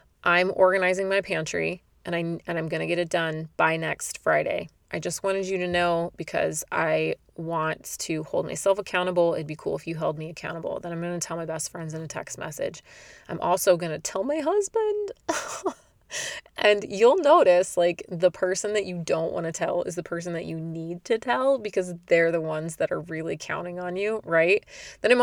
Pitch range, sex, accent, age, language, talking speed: 165-195 Hz, female, American, 20-39, English, 210 wpm